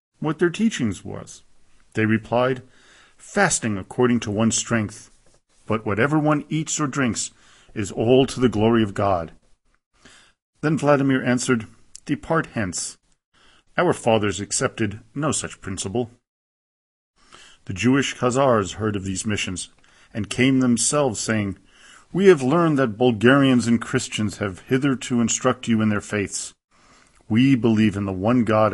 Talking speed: 140 wpm